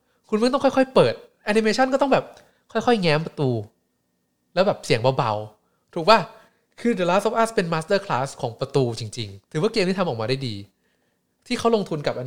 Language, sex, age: Thai, male, 20-39